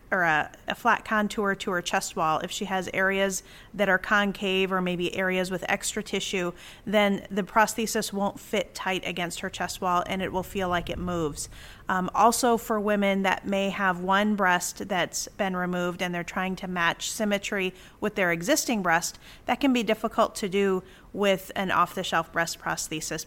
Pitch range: 175-205 Hz